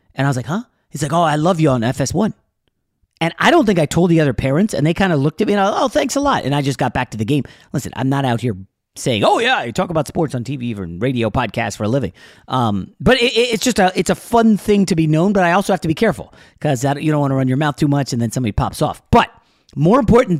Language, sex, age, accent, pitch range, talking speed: English, male, 30-49, American, 120-170 Hz, 305 wpm